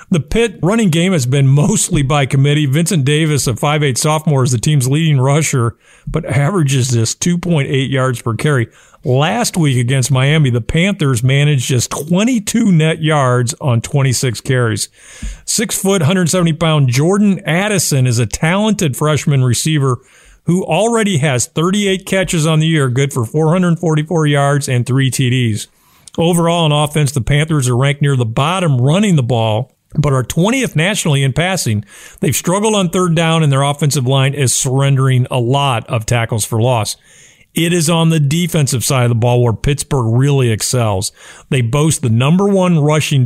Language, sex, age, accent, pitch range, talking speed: English, male, 50-69, American, 130-170 Hz, 165 wpm